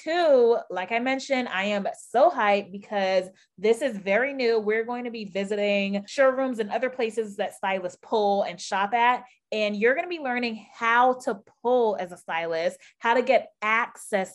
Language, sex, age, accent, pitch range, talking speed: English, female, 20-39, American, 190-235 Hz, 185 wpm